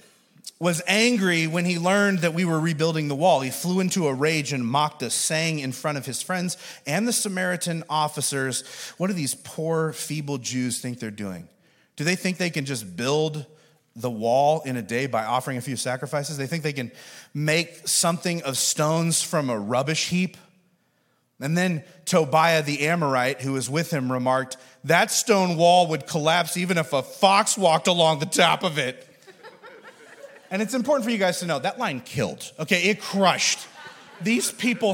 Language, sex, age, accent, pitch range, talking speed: English, male, 30-49, American, 135-185 Hz, 185 wpm